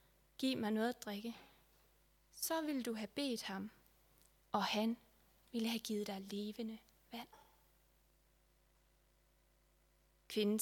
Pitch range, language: 205-250 Hz, Danish